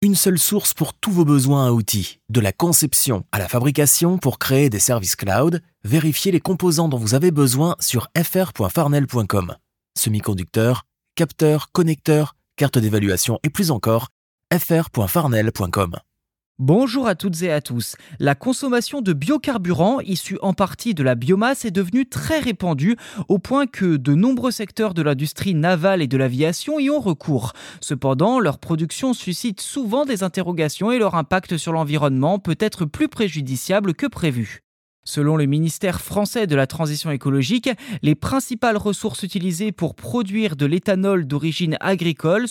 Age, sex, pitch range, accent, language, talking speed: 20-39, male, 140-205 Hz, French, French, 155 wpm